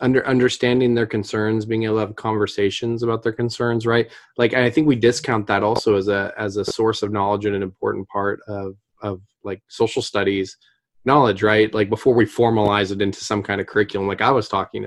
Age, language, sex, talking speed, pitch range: 20-39, English, male, 210 wpm, 100-120 Hz